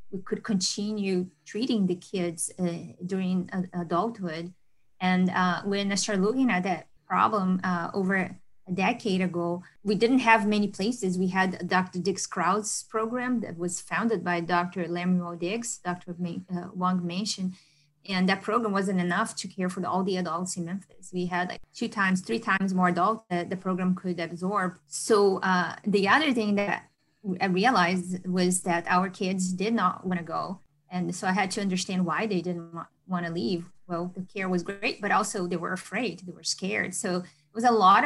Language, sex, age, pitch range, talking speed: English, female, 20-39, 180-205 Hz, 190 wpm